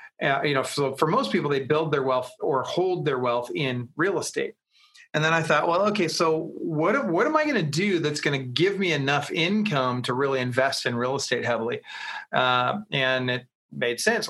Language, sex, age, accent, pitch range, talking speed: English, male, 30-49, American, 135-180 Hz, 215 wpm